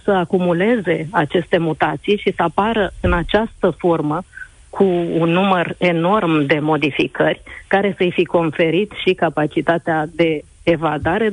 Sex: female